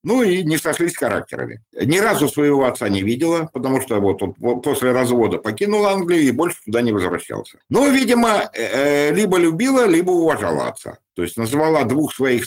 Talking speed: 175 wpm